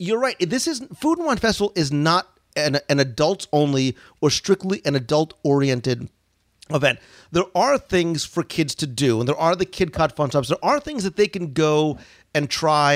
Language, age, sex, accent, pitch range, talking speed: English, 40-59, male, American, 140-175 Hz, 205 wpm